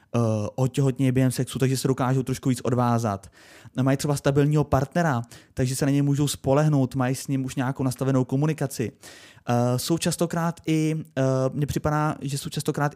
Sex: male